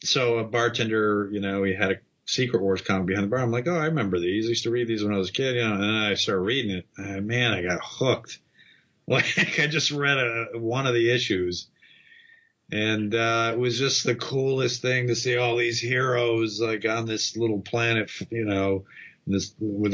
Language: English